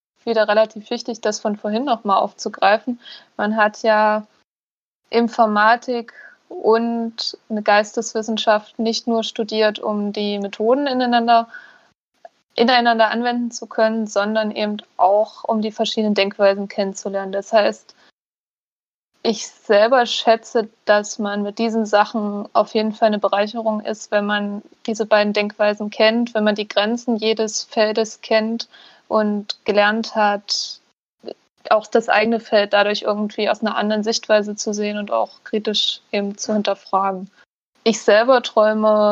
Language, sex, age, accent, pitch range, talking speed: German, female, 20-39, German, 205-230 Hz, 135 wpm